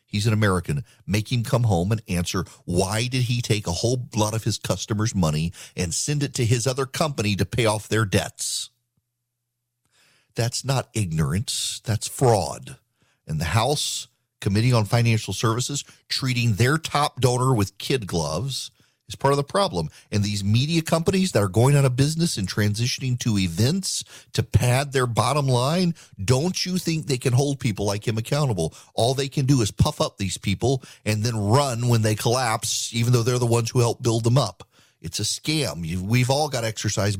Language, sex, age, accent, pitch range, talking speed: English, male, 40-59, American, 105-135 Hz, 190 wpm